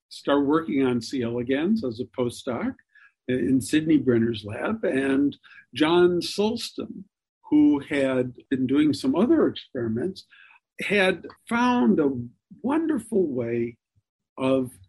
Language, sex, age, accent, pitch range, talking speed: English, male, 50-69, American, 120-195 Hz, 115 wpm